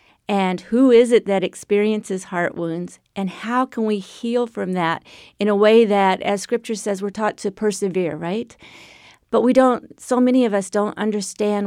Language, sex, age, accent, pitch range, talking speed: English, female, 40-59, American, 190-220 Hz, 185 wpm